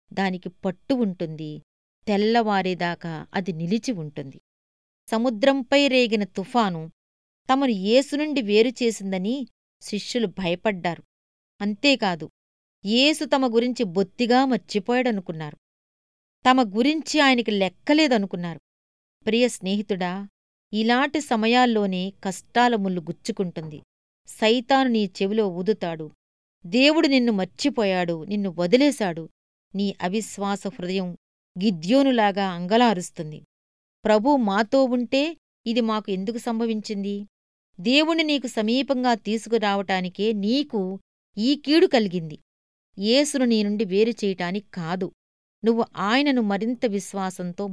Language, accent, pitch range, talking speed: Telugu, native, 185-240 Hz, 85 wpm